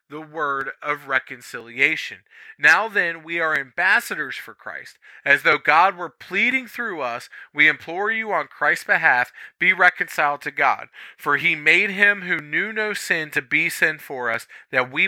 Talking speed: 170 wpm